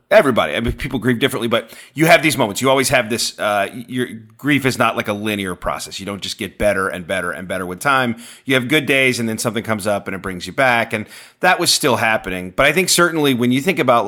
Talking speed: 265 wpm